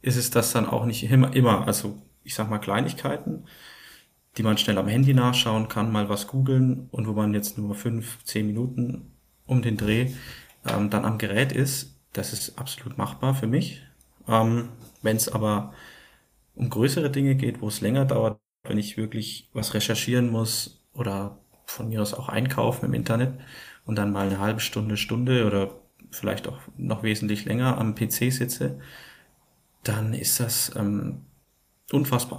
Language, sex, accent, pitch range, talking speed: German, male, German, 105-125 Hz, 170 wpm